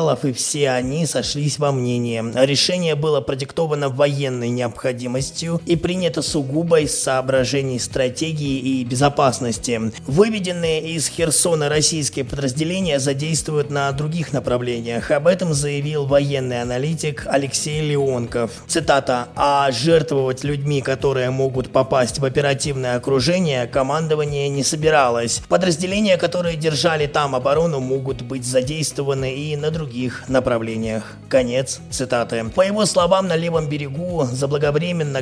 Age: 20-39